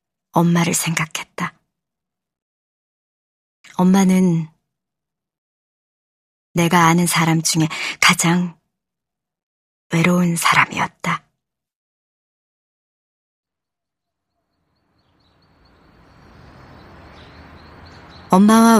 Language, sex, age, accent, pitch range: Korean, male, 40-59, native, 160-190 Hz